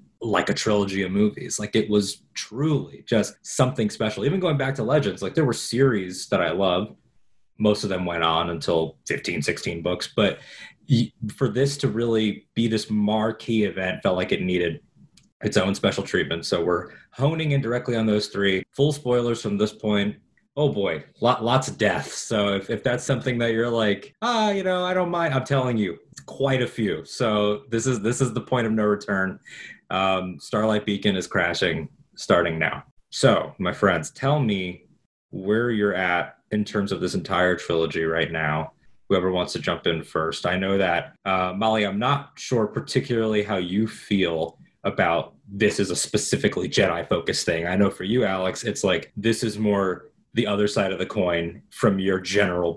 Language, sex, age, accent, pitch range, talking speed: English, male, 20-39, American, 95-120 Hz, 190 wpm